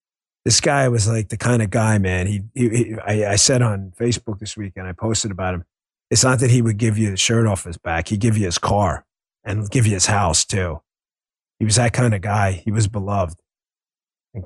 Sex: male